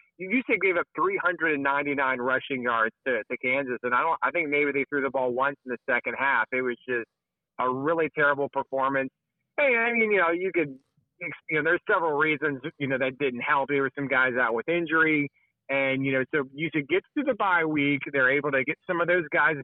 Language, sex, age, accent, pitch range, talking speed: English, male, 30-49, American, 135-165 Hz, 230 wpm